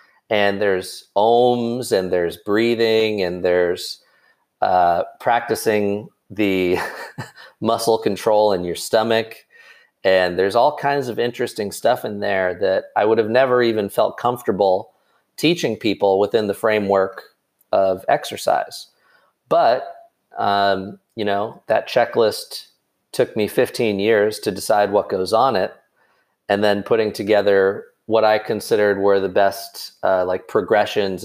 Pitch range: 100-120 Hz